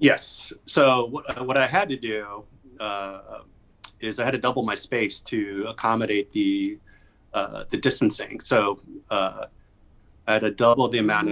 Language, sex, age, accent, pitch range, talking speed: English, male, 30-49, American, 100-120 Hz, 160 wpm